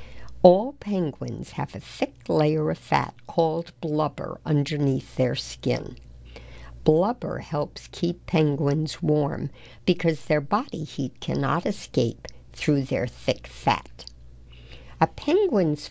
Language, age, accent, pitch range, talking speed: English, 60-79, American, 125-170 Hz, 115 wpm